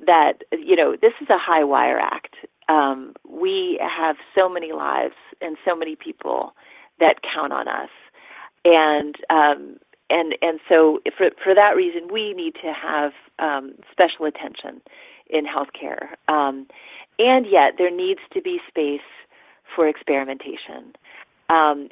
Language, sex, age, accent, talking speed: English, female, 40-59, American, 140 wpm